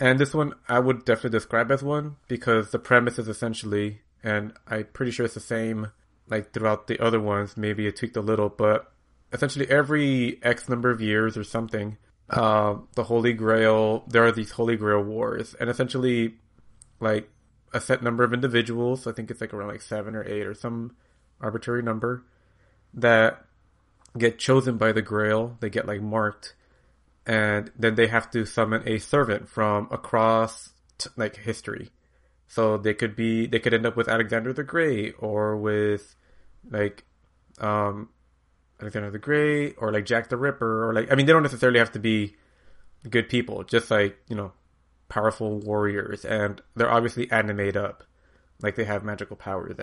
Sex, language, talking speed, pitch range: male, English, 175 wpm, 105-120 Hz